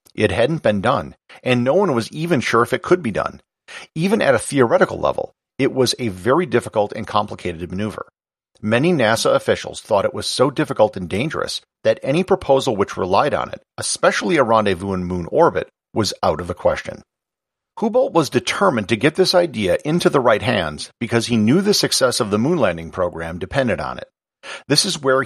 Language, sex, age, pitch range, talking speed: English, male, 50-69, 105-170 Hz, 195 wpm